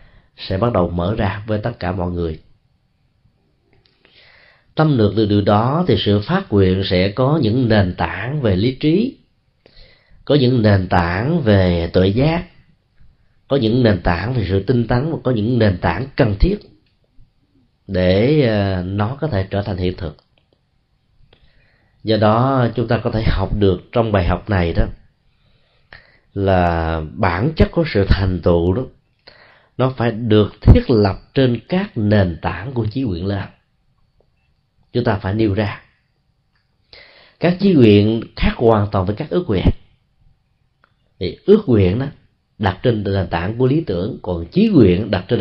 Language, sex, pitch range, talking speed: Vietnamese, male, 95-125 Hz, 160 wpm